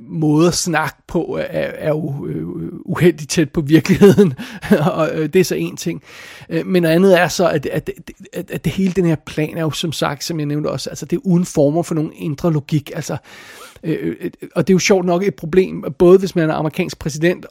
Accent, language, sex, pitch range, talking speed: native, Danish, male, 155-180 Hz, 210 wpm